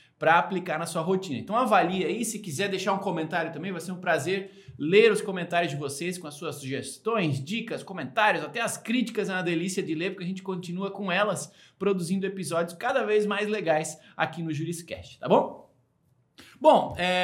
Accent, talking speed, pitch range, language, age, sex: Brazilian, 190 wpm, 165-225 Hz, Portuguese, 20-39, male